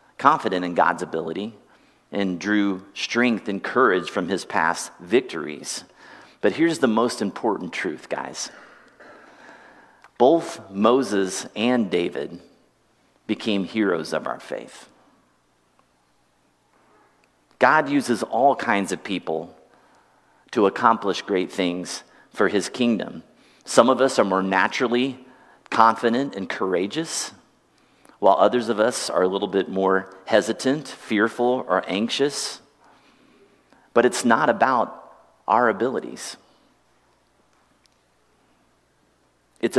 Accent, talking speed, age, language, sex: American, 105 wpm, 40-59, English, male